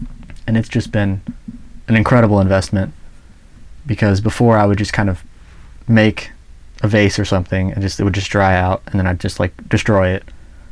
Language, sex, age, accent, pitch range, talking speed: English, male, 20-39, American, 95-110 Hz, 190 wpm